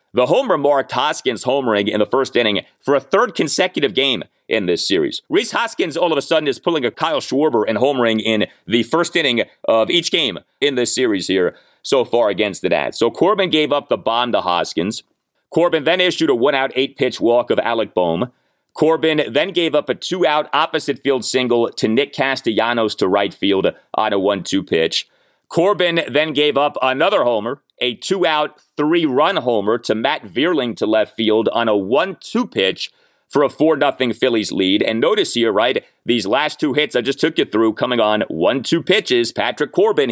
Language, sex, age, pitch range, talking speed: English, male, 30-49, 125-180 Hz, 190 wpm